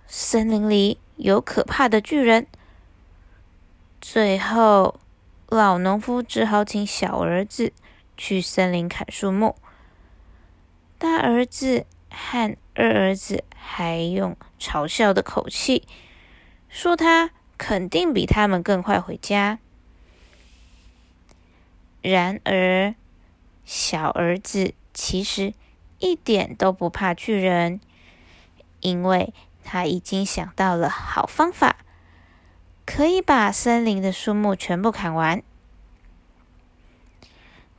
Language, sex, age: Chinese, female, 20-39